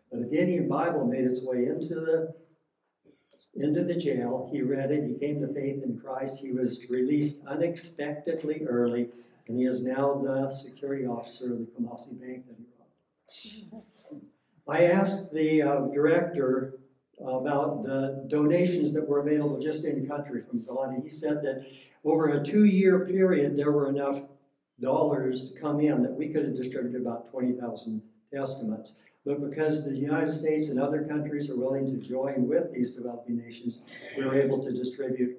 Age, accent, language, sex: 60-79, American, English, male